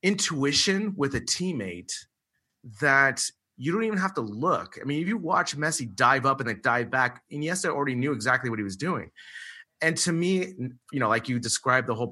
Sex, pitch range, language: male, 110-135 Hz, English